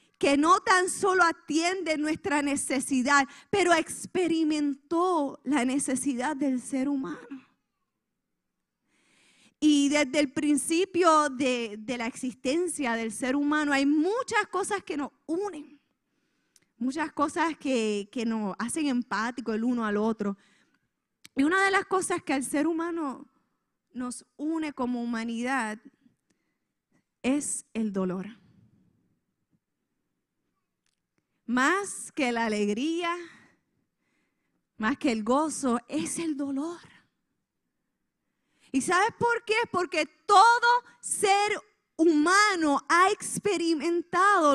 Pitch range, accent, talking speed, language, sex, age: 255-335 Hz, American, 105 wpm, Spanish, female, 10-29